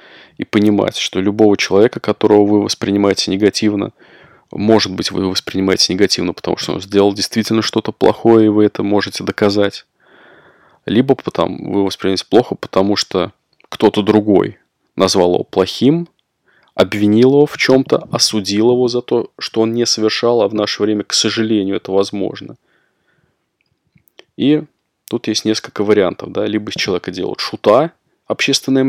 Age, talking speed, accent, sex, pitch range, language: 20-39, 145 wpm, native, male, 100-115 Hz, Russian